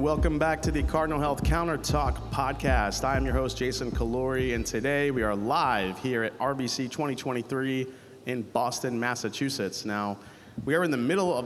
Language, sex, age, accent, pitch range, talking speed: English, male, 30-49, American, 105-130 Hz, 180 wpm